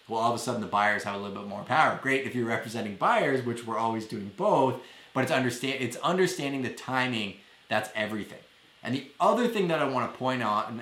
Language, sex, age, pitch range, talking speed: English, male, 30-49, 110-130 Hz, 235 wpm